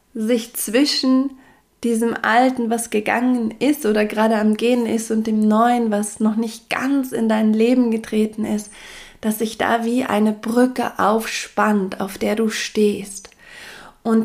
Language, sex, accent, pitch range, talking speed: German, female, German, 210-240 Hz, 150 wpm